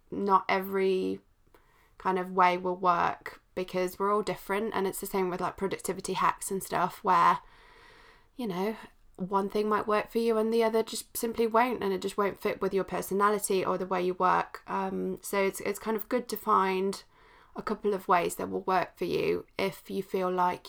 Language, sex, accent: English, female, British